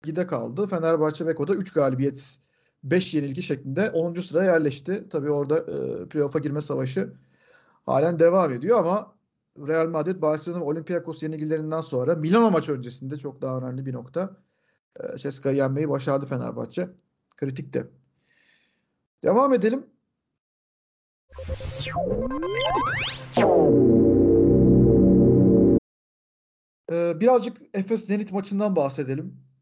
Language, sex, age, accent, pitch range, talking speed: Turkish, male, 50-69, native, 145-185 Hz, 105 wpm